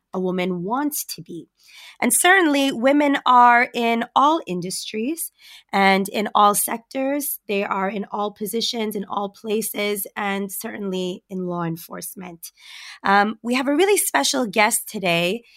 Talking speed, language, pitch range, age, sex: 140 wpm, English, 185-235 Hz, 20-39, female